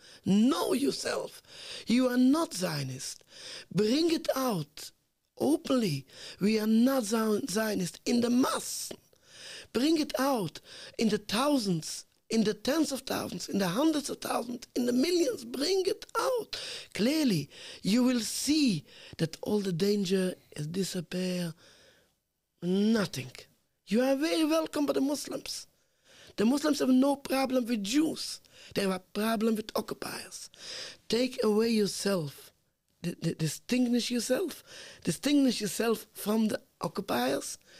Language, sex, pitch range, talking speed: English, male, 185-270 Hz, 125 wpm